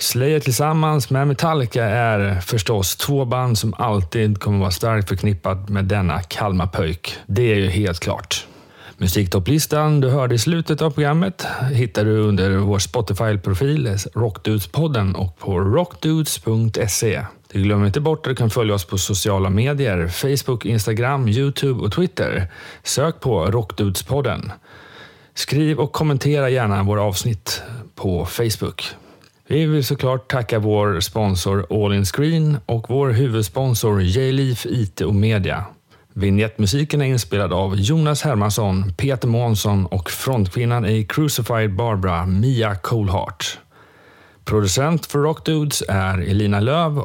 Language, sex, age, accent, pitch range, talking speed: Swedish, male, 30-49, native, 100-135 Hz, 135 wpm